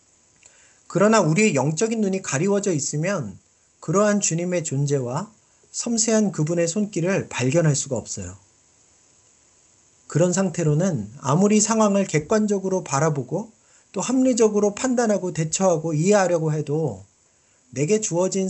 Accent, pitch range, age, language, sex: native, 135-205 Hz, 40-59, Korean, male